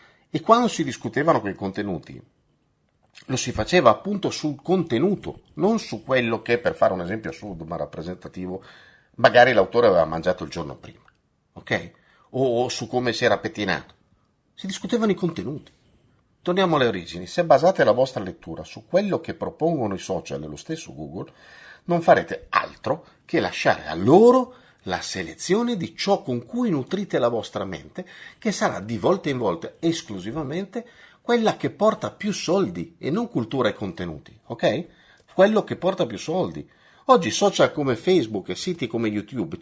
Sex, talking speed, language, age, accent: male, 160 wpm, Italian, 50-69, native